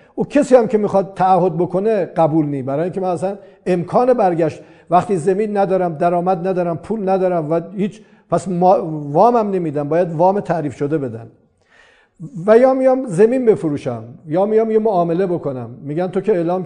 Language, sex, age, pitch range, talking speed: Persian, male, 50-69, 170-215 Hz, 175 wpm